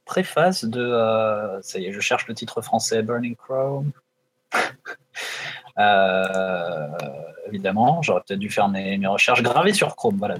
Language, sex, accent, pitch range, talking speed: French, male, French, 100-130 Hz, 150 wpm